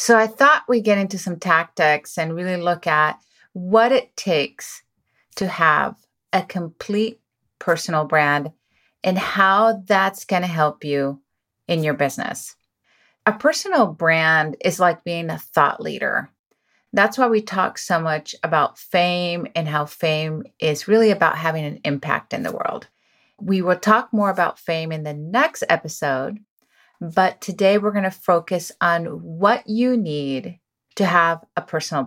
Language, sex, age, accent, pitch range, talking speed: English, female, 30-49, American, 155-210 Hz, 155 wpm